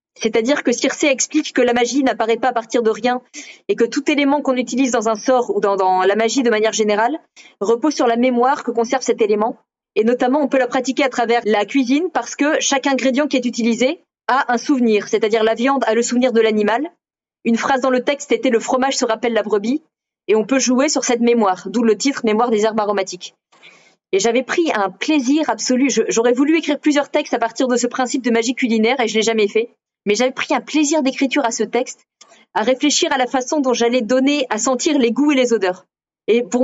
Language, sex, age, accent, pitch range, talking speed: French, female, 30-49, French, 230-275 Hz, 235 wpm